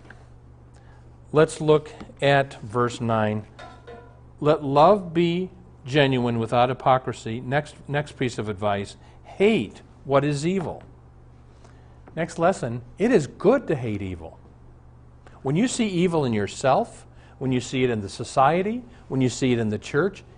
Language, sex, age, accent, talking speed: English, male, 50-69, American, 140 wpm